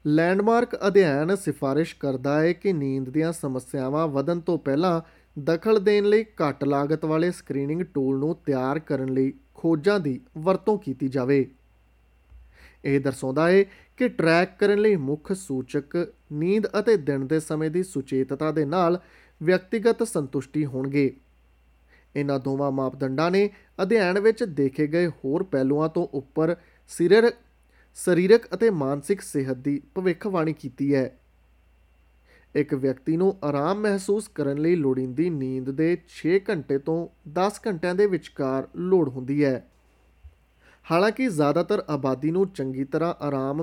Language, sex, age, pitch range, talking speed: Punjabi, male, 30-49, 135-180 Hz, 125 wpm